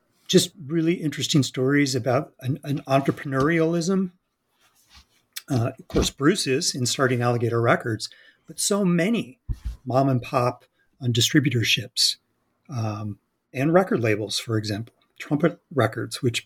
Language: English